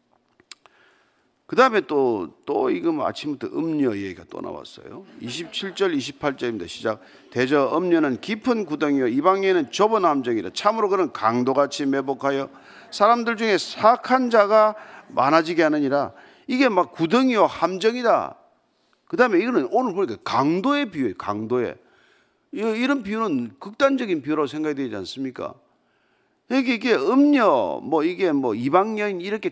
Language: Korean